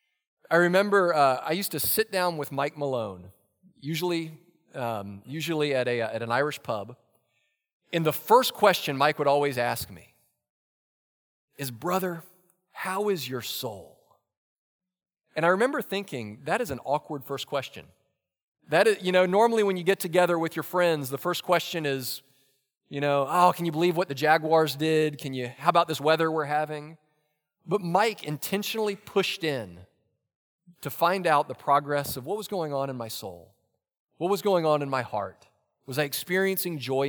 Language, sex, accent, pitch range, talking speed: English, male, American, 130-180 Hz, 175 wpm